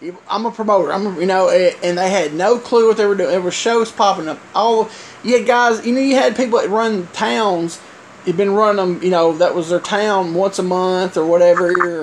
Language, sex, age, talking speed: English, male, 30-49, 240 wpm